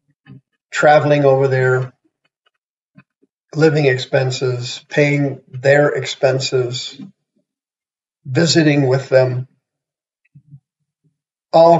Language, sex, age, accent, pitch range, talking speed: English, male, 50-69, American, 130-150 Hz, 60 wpm